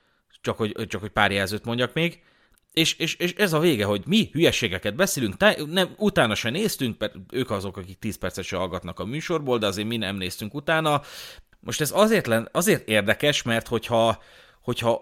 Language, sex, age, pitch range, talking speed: Hungarian, male, 30-49, 110-155 Hz, 170 wpm